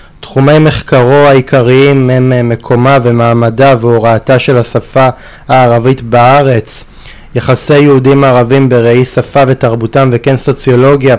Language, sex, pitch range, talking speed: Hebrew, male, 125-140 Hz, 100 wpm